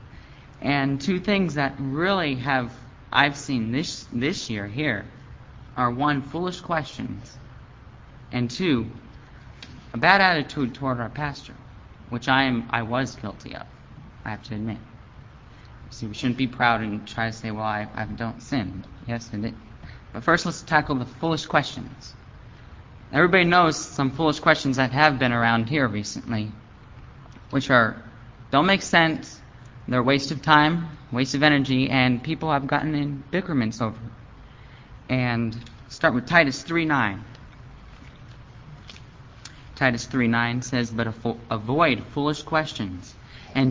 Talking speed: 145 wpm